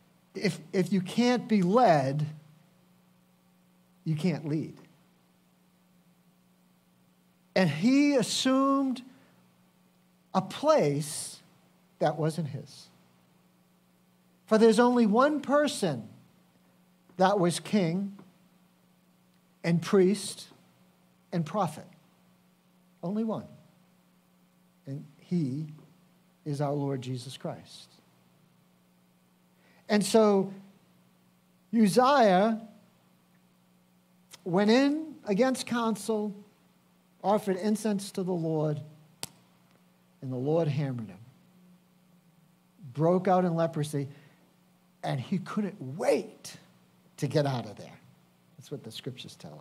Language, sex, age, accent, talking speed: English, male, 50-69, American, 90 wpm